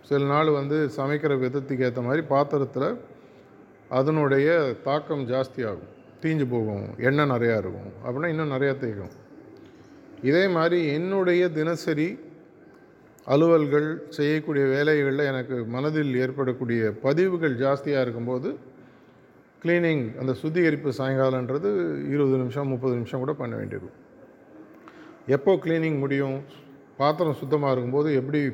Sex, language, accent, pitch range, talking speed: male, Tamil, native, 130-155 Hz, 105 wpm